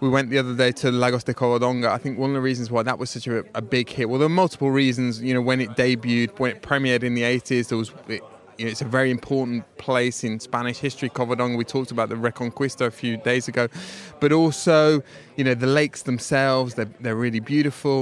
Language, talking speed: English, 245 wpm